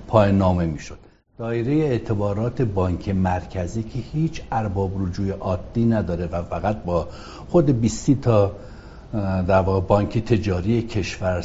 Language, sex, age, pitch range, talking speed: Persian, male, 60-79, 90-115 Hz, 120 wpm